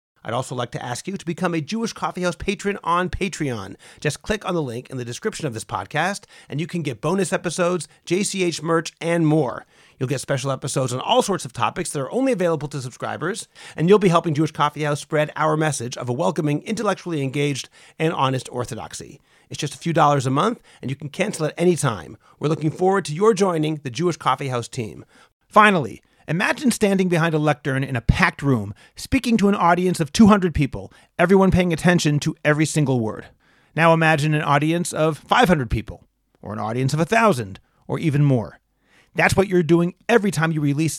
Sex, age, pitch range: male, 40-59, 140-180 Hz